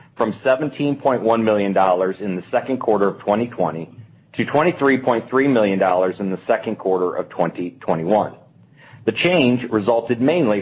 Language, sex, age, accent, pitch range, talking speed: English, male, 40-59, American, 105-135 Hz, 120 wpm